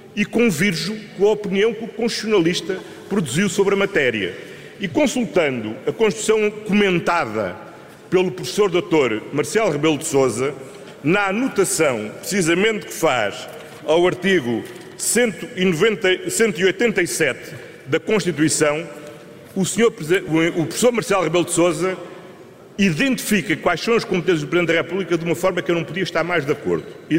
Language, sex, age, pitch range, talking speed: Portuguese, male, 40-59, 165-210 Hz, 135 wpm